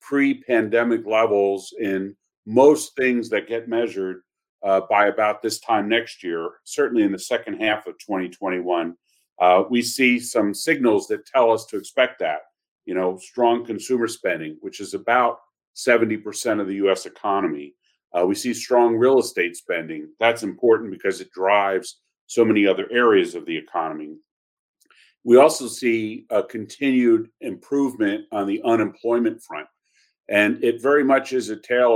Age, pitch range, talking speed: 50-69, 105-160 Hz, 155 wpm